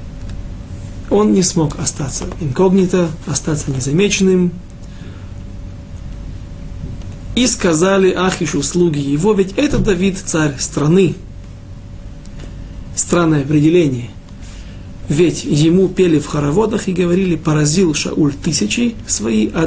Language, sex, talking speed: Russian, male, 95 wpm